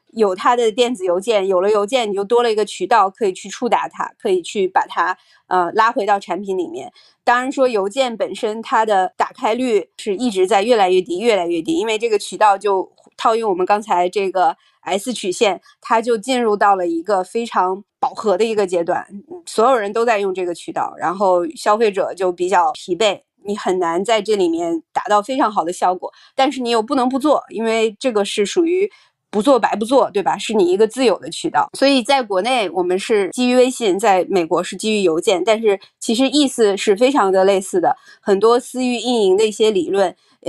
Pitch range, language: 195-285 Hz, Chinese